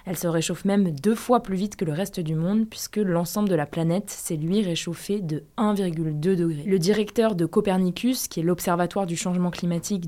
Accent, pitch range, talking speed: French, 165-200 Hz, 200 wpm